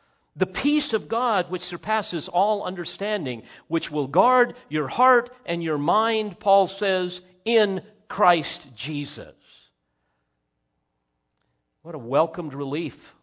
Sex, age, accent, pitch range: male, 50-69, American, 115-160 Hz